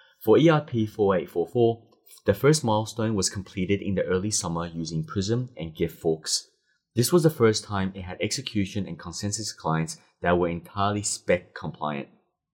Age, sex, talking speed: 30-49, male, 150 wpm